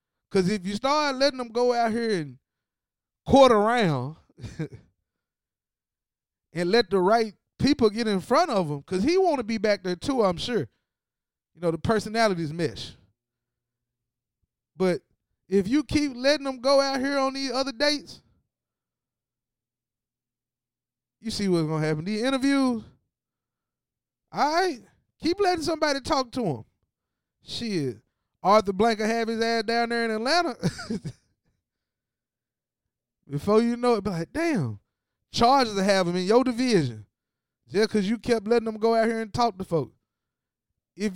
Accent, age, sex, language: American, 20-39, male, English